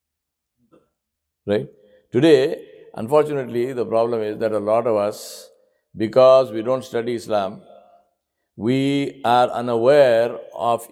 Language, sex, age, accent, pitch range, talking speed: English, male, 60-79, Indian, 115-160 Hz, 110 wpm